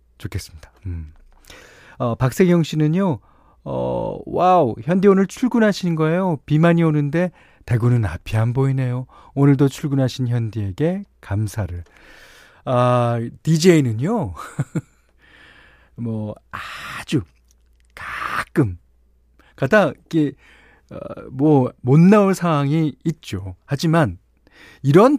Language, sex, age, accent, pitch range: Korean, male, 40-59, native, 105-155 Hz